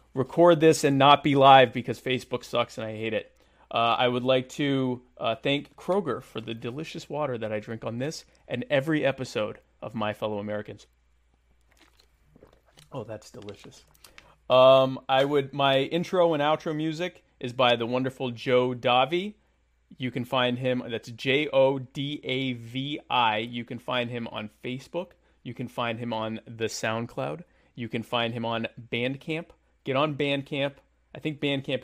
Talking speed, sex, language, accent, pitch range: 160 wpm, male, English, American, 115-140 Hz